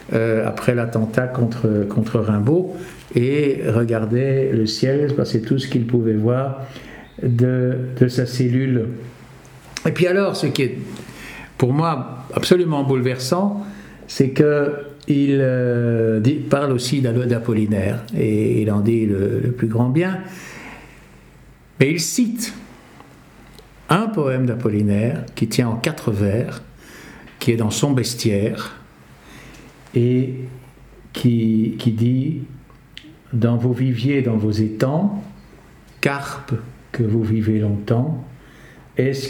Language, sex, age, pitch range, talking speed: French, male, 60-79, 115-140 Hz, 125 wpm